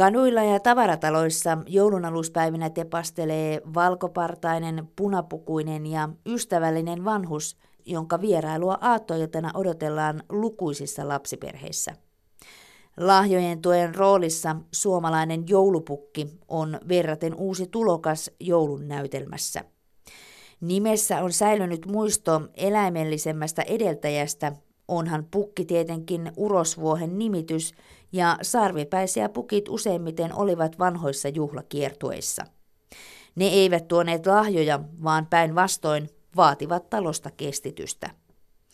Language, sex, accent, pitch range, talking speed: Finnish, female, native, 155-195 Hz, 85 wpm